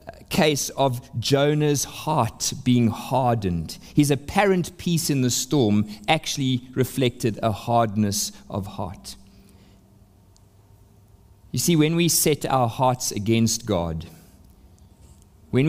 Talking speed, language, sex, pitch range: 105 wpm, English, male, 100-140 Hz